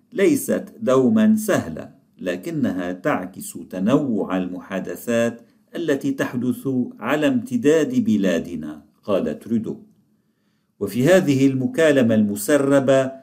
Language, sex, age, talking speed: Arabic, male, 50-69, 80 wpm